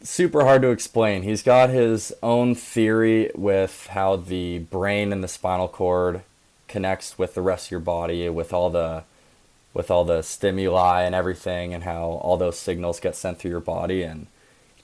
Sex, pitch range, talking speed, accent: male, 90-105 Hz, 180 wpm, American